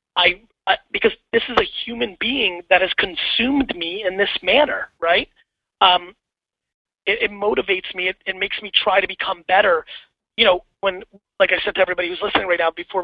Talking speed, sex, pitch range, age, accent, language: 185 wpm, male, 180-230 Hz, 30-49, American, English